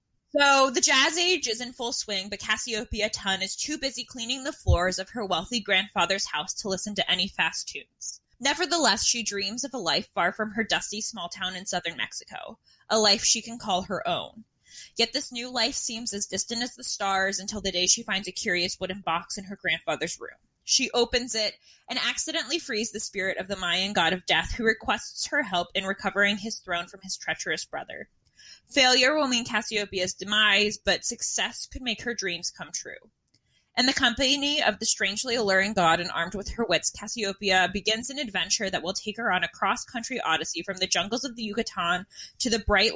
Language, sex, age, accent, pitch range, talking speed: English, female, 20-39, American, 185-245 Hz, 205 wpm